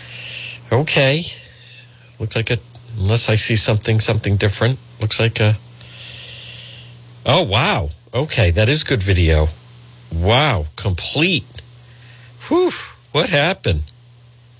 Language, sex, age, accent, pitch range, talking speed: English, male, 50-69, American, 85-120 Hz, 105 wpm